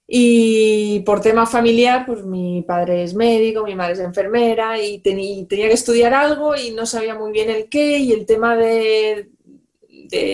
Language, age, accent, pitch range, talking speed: Spanish, 20-39, Spanish, 200-235 Hz, 175 wpm